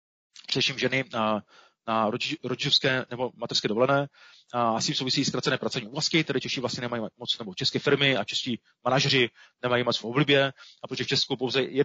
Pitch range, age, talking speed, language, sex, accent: 120-140 Hz, 30-49, 160 wpm, Czech, male, native